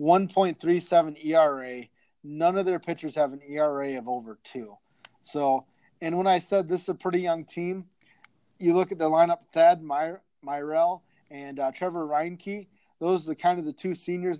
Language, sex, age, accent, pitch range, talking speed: English, male, 30-49, American, 145-180 Hz, 180 wpm